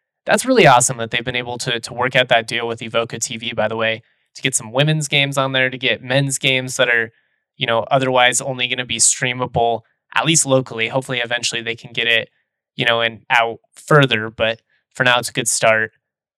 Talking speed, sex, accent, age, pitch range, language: 225 wpm, male, American, 20-39, 115-135 Hz, English